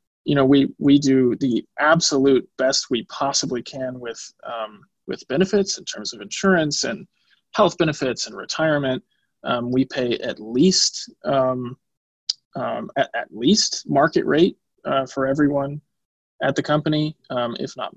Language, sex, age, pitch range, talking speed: English, male, 20-39, 130-150 Hz, 150 wpm